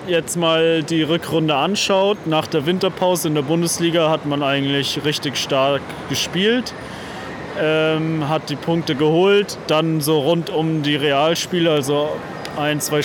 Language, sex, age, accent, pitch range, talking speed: German, male, 20-39, German, 145-165 Hz, 145 wpm